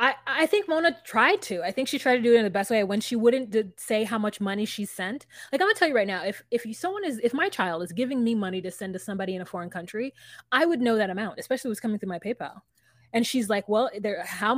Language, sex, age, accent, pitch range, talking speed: English, female, 20-39, American, 185-305 Hz, 290 wpm